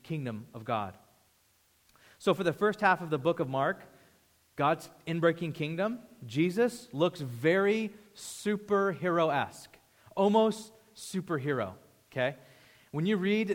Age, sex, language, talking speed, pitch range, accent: 30-49, male, English, 115 wpm, 140-190 Hz, American